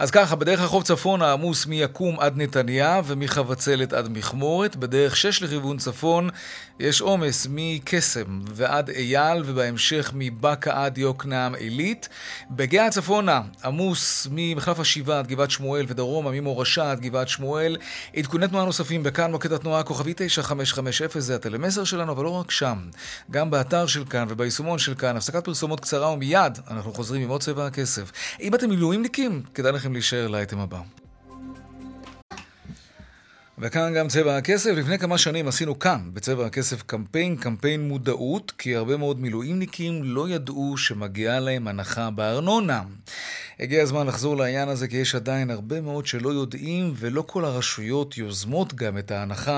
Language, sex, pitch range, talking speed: Hebrew, male, 125-160 Hz, 140 wpm